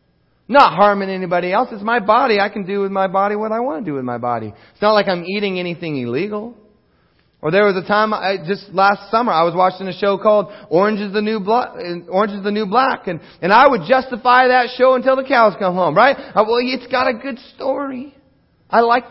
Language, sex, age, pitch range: English, male, 30-49, 155-245 Hz